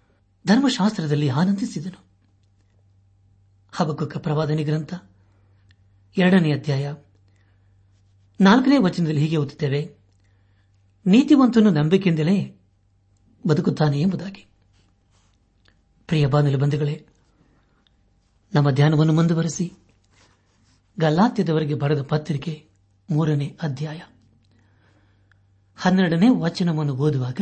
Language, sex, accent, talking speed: Kannada, male, native, 60 wpm